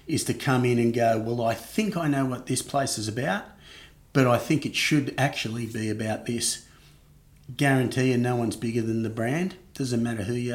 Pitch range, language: 115-130 Hz, English